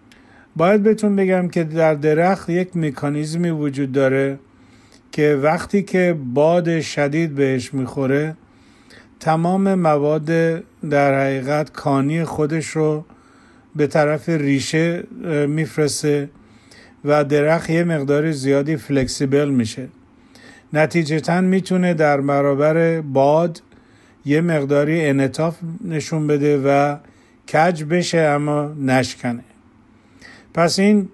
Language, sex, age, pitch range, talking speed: Persian, male, 50-69, 140-165 Hz, 100 wpm